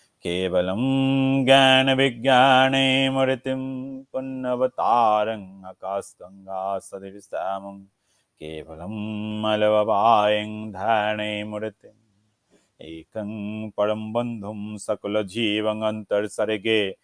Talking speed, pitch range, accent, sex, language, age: 55 wpm, 105-125 Hz, native, male, Bengali, 30-49